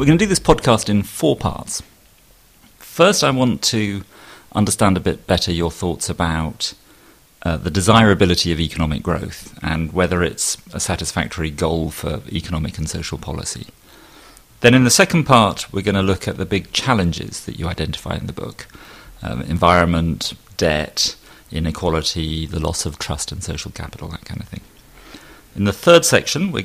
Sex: male